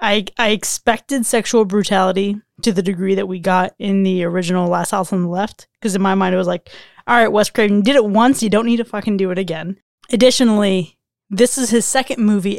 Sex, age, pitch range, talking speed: female, 20-39, 195-235 Hz, 225 wpm